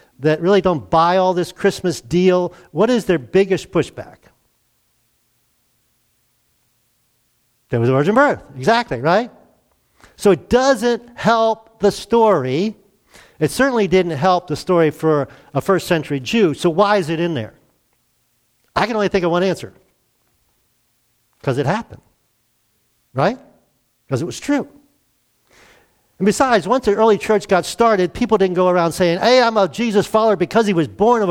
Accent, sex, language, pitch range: American, male, English, 155-220 Hz